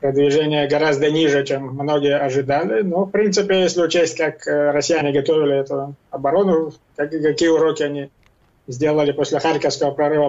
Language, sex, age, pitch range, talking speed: Ukrainian, male, 20-39, 145-170 Hz, 135 wpm